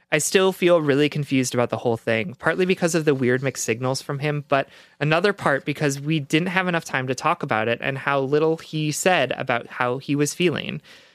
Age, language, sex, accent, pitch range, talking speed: 20-39, English, male, American, 130-165 Hz, 220 wpm